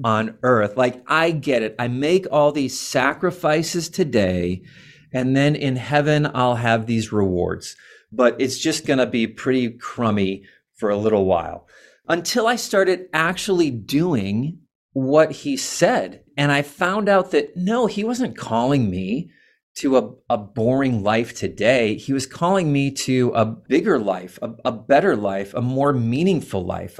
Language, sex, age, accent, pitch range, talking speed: English, male, 30-49, American, 105-145 Hz, 160 wpm